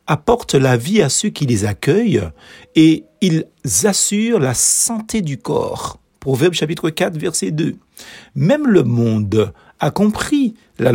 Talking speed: 140 wpm